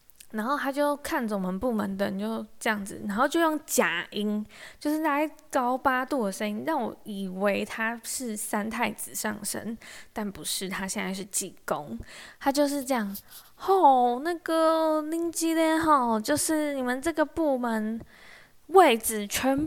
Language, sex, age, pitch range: Chinese, female, 20-39, 205-285 Hz